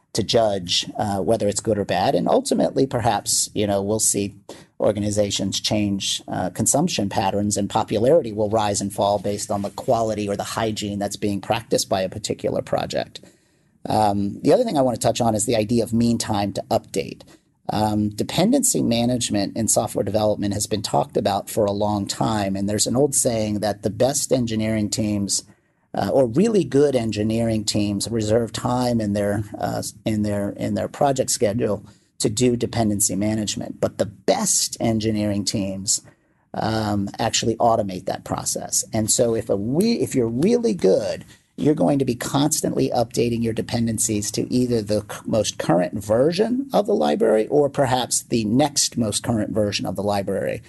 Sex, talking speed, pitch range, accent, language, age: male, 175 wpm, 100-120 Hz, American, English, 40-59